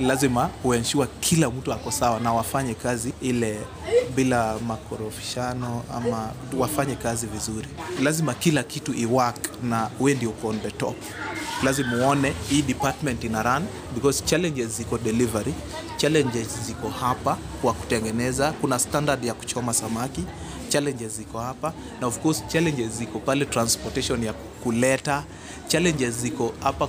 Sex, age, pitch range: male, 30-49, 115-145 Hz